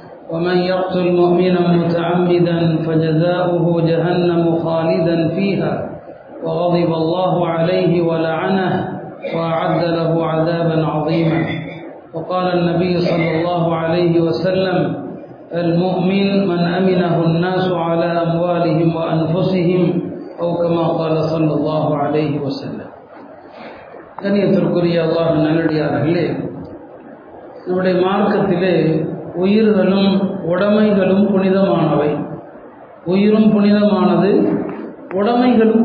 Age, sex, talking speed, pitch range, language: 40-59, male, 85 wpm, 170-220 Hz, Tamil